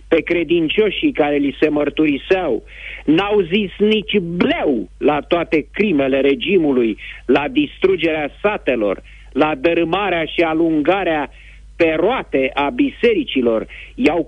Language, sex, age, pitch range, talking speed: Romanian, male, 50-69, 125-205 Hz, 110 wpm